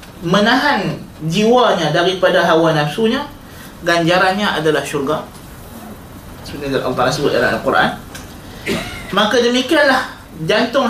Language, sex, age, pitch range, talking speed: Malay, male, 20-39, 160-220 Hz, 95 wpm